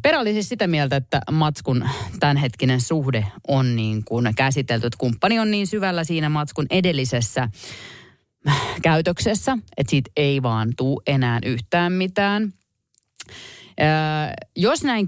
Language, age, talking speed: Finnish, 30-49, 125 wpm